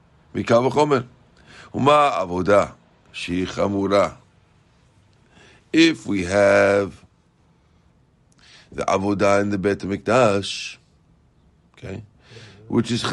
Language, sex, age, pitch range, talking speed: English, male, 50-69, 100-130 Hz, 50 wpm